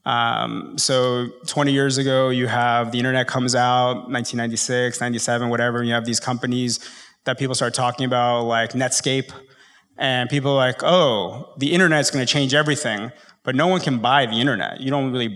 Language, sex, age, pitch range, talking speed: English, male, 20-39, 120-140 Hz, 185 wpm